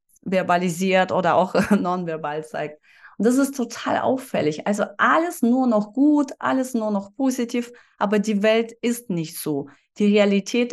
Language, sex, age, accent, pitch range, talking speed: German, female, 30-49, German, 195-250 Hz, 150 wpm